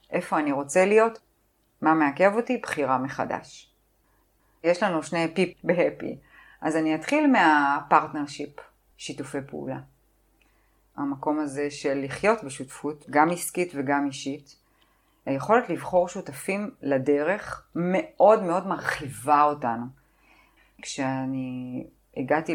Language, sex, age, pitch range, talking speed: Hebrew, female, 30-49, 135-155 Hz, 105 wpm